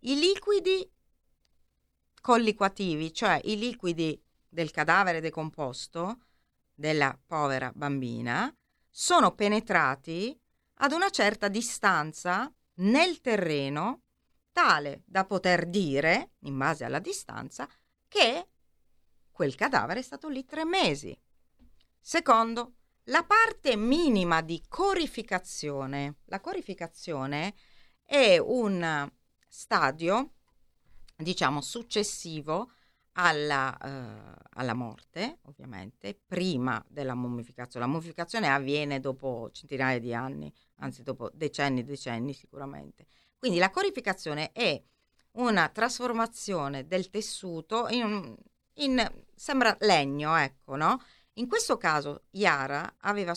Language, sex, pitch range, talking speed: Italian, female, 135-230 Hz, 100 wpm